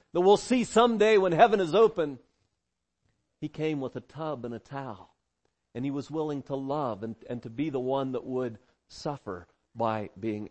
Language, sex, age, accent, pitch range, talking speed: English, male, 40-59, American, 110-165 Hz, 190 wpm